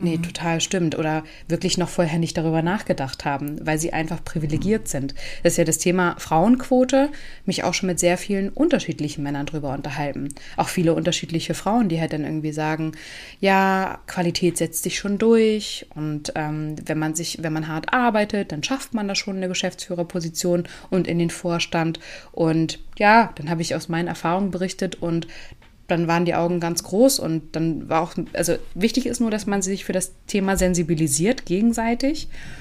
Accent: German